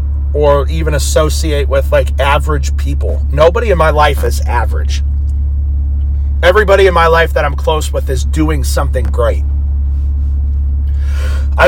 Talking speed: 135 wpm